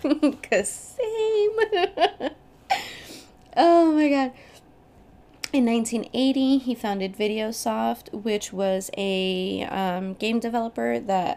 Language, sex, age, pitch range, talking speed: English, female, 20-39, 190-230 Hz, 85 wpm